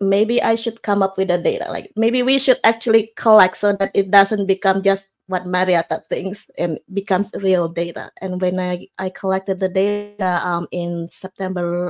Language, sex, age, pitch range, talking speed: English, female, 20-39, 175-220 Hz, 185 wpm